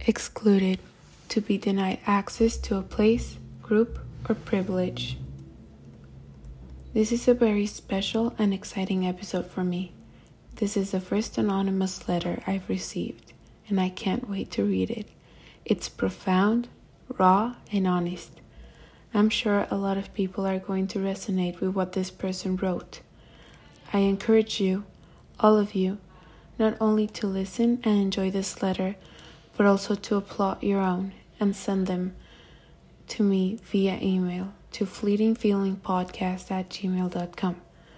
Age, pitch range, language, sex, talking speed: 20-39, 185-205 Hz, English, female, 135 wpm